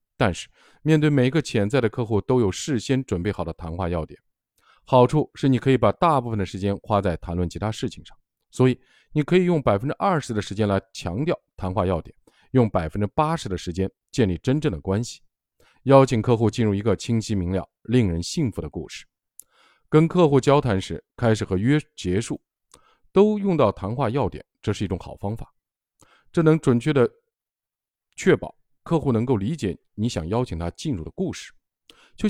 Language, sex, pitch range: Chinese, male, 95-140 Hz